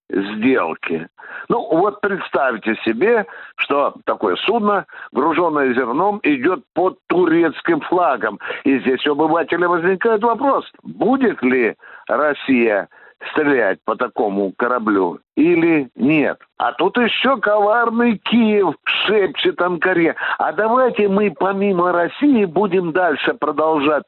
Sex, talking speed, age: male, 110 wpm, 60-79